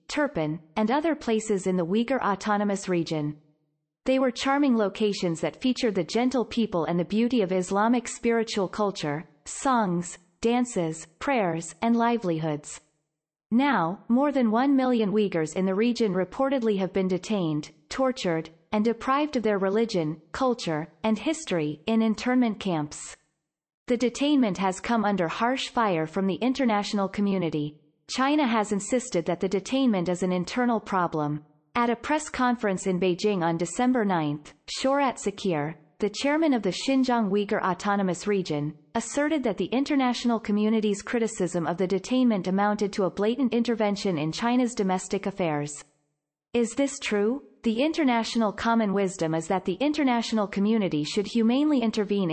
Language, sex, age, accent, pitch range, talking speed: English, female, 30-49, American, 175-240 Hz, 145 wpm